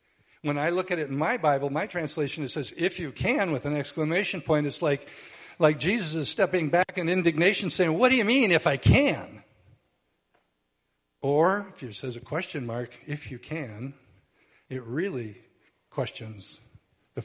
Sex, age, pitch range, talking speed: male, 60-79, 115-160 Hz, 175 wpm